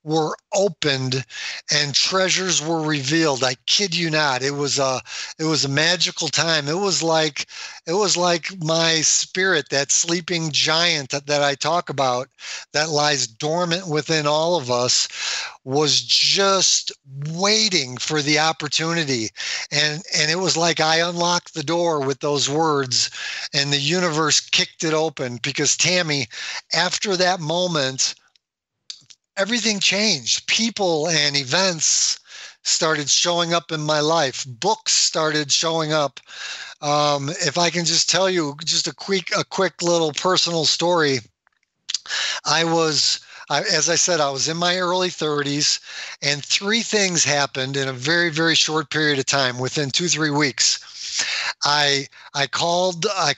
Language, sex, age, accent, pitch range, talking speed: English, male, 50-69, American, 145-175 Hz, 150 wpm